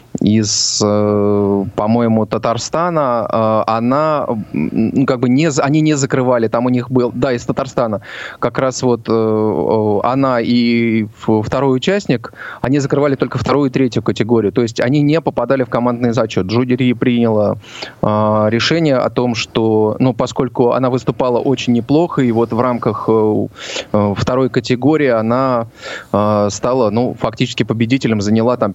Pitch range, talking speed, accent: 110-135 Hz, 135 wpm, native